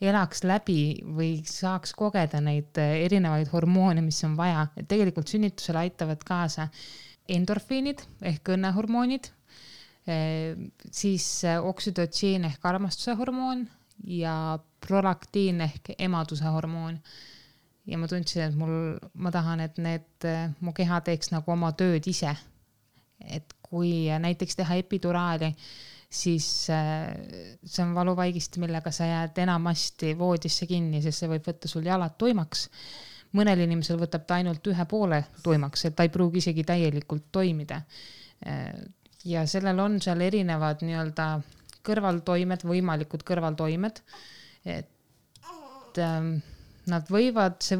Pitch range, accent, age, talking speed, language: 160-185 Hz, Finnish, 20-39, 115 wpm, English